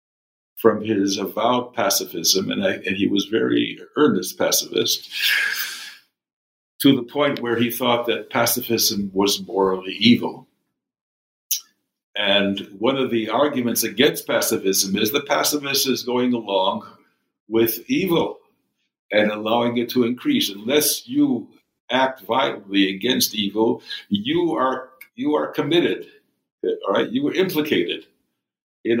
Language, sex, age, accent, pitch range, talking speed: English, male, 60-79, American, 115-145 Hz, 125 wpm